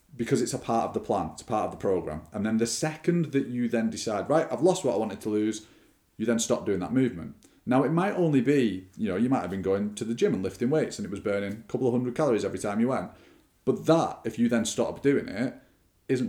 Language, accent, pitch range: English, British, 100-140 Hz